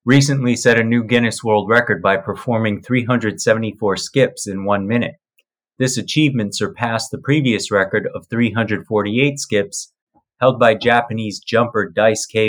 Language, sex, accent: English, male, American